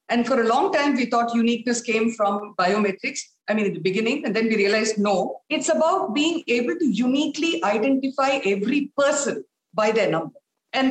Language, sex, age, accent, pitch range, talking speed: English, female, 50-69, Indian, 200-285 Hz, 185 wpm